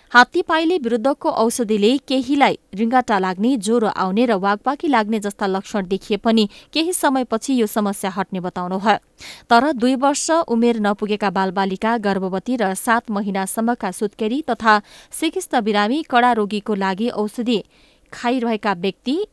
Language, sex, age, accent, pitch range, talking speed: English, female, 20-39, Indian, 200-255 Hz, 155 wpm